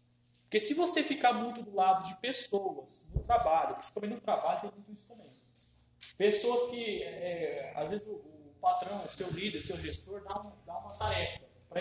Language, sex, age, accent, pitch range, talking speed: Portuguese, male, 20-39, Brazilian, 180-235 Hz, 195 wpm